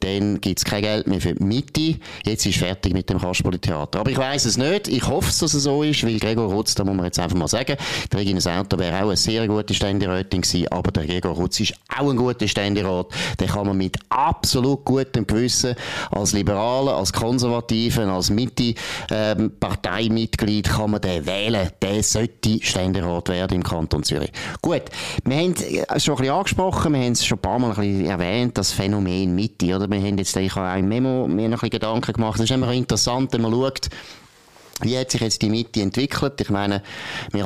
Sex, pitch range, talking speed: male, 95-125 Hz, 200 wpm